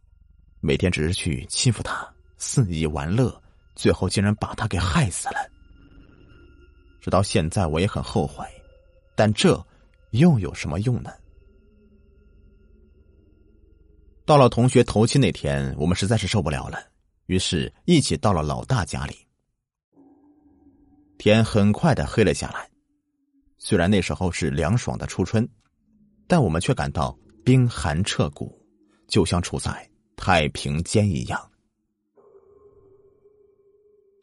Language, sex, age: Chinese, male, 30-49